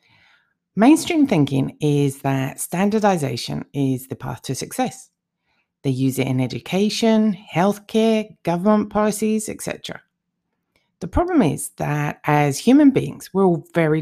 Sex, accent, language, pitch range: female, British, English, 150-210 Hz